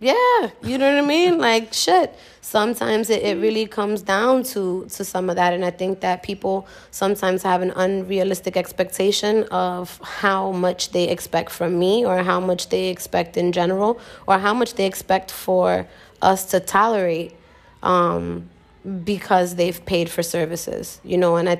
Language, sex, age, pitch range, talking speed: English, female, 20-39, 170-195 Hz, 170 wpm